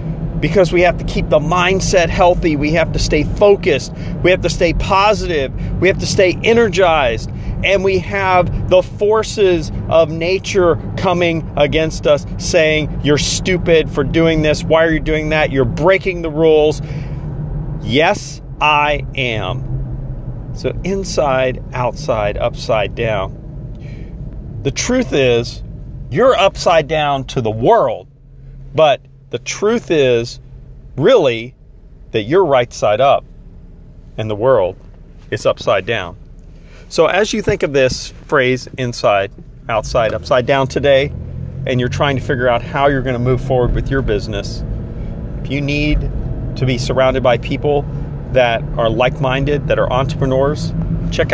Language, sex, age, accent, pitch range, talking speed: English, male, 40-59, American, 130-165 Hz, 145 wpm